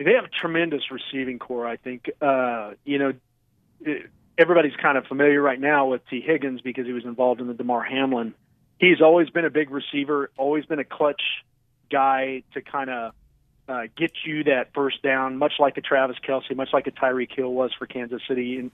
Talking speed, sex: 200 wpm, male